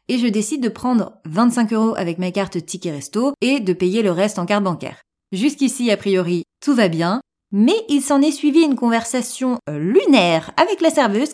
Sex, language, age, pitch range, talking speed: female, French, 30-49, 195-275 Hz, 195 wpm